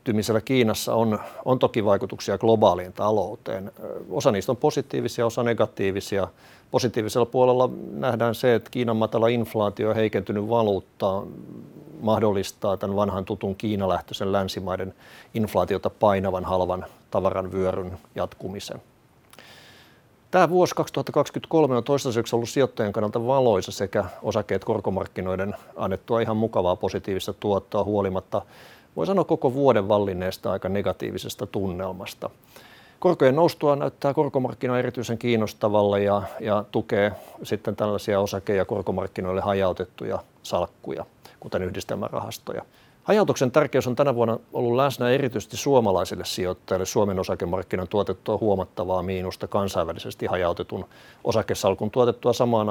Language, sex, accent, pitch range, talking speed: Finnish, male, native, 95-125 Hz, 115 wpm